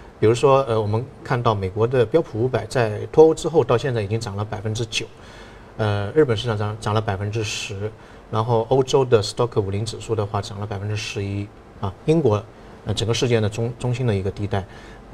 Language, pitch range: Chinese, 105-125 Hz